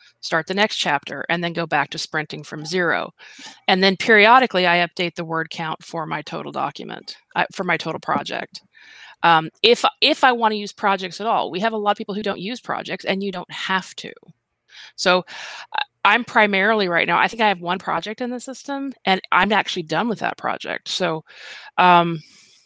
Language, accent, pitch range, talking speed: English, American, 170-215 Hz, 205 wpm